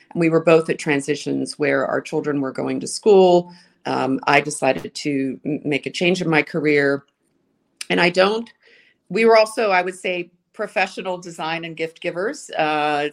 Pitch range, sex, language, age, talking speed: 140-175 Hz, female, English, 40-59, 170 wpm